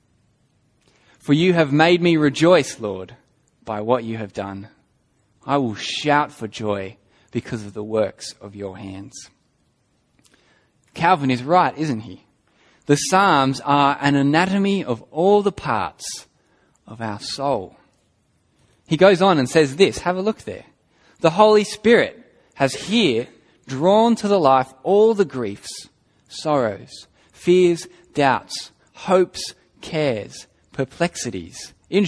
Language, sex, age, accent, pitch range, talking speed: English, male, 10-29, Australian, 115-170 Hz, 130 wpm